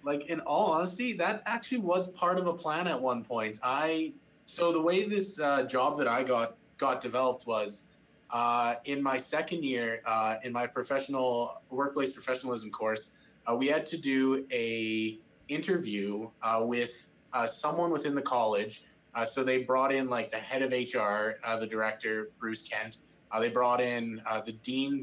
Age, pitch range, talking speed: 20-39, 115-145 Hz, 180 wpm